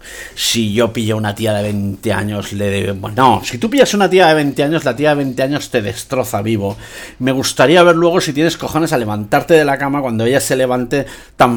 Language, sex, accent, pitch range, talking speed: Spanish, male, Spanish, 110-165 Hz, 225 wpm